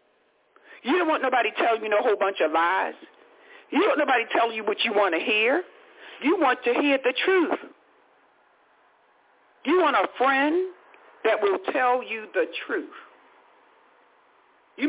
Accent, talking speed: American, 155 wpm